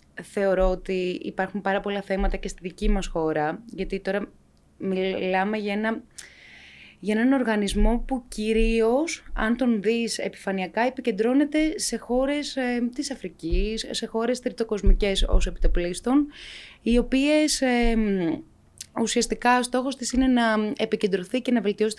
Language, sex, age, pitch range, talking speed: Greek, female, 20-39, 190-240 Hz, 140 wpm